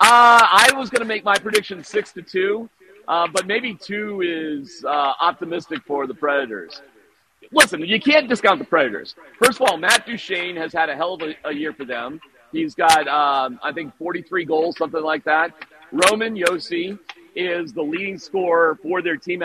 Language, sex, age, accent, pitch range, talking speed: English, male, 40-59, American, 155-230 Hz, 190 wpm